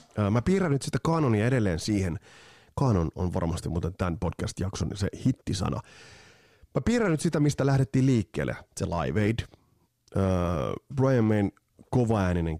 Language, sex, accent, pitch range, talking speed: Finnish, male, native, 95-130 Hz, 140 wpm